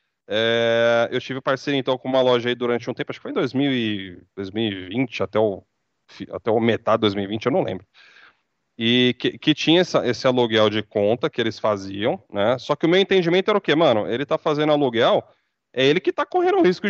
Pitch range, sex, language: 115-160 Hz, male, Portuguese